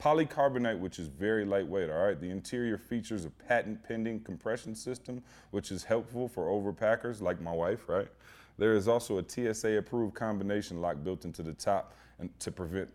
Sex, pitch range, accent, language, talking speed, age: male, 95-115 Hz, American, English, 175 wpm, 30-49